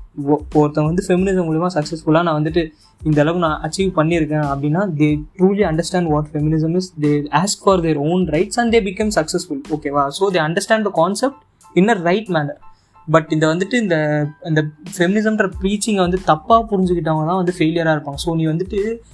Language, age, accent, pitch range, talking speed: Tamil, 20-39, native, 155-195 Hz, 170 wpm